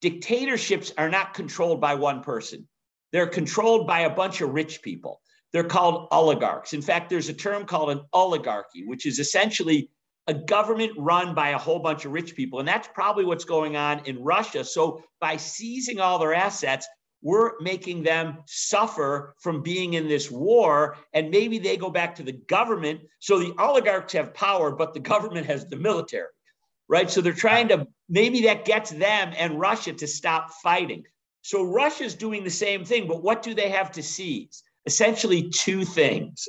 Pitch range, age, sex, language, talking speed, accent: 155-215 Hz, 50-69, male, English, 185 wpm, American